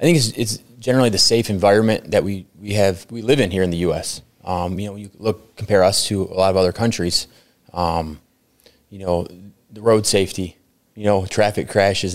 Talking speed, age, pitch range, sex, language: 205 wpm, 20-39, 95-110 Hz, male, English